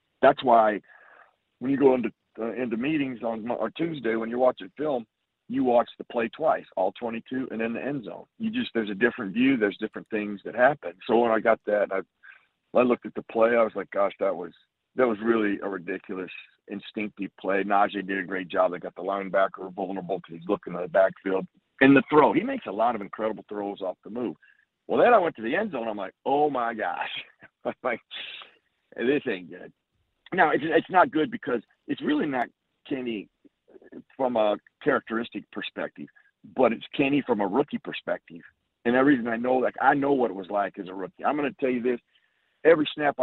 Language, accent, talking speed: English, American, 215 wpm